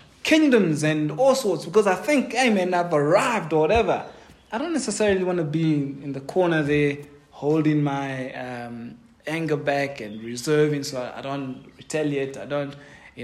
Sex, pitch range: male, 135-175 Hz